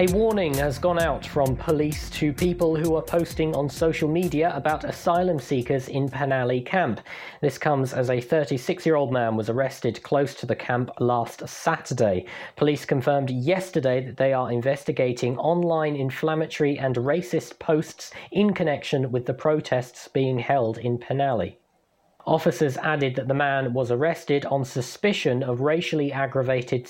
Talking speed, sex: 150 wpm, male